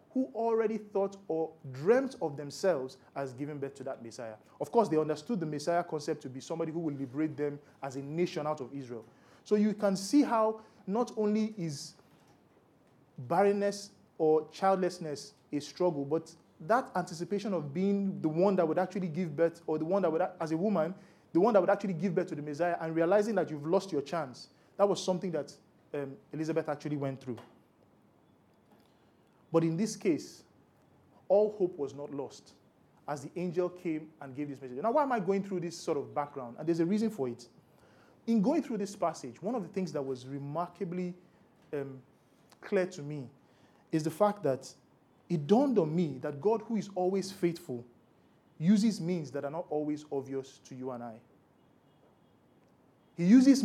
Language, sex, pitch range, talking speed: English, male, 145-200 Hz, 190 wpm